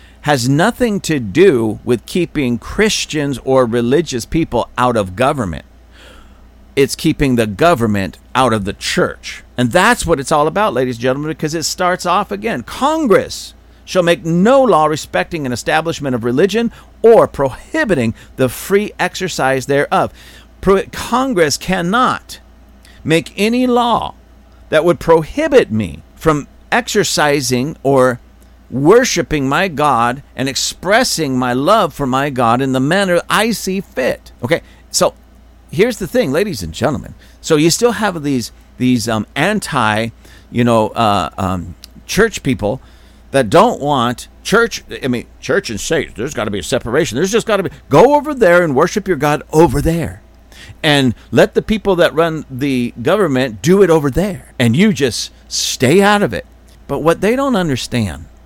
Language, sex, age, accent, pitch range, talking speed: English, male, 50-69, American, 120-180 Hz, 160 wpm